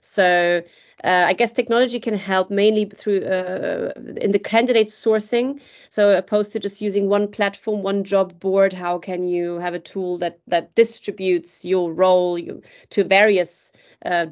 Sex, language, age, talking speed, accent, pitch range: female, English, 30-49, 165 wpm, German, 175-205 Hz